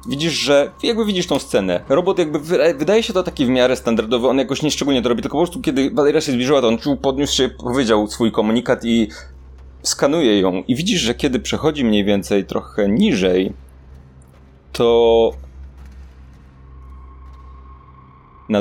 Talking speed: 160 wpm